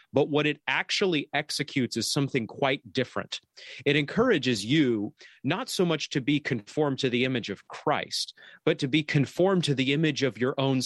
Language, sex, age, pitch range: English, male, 30-49, 115-145 Hz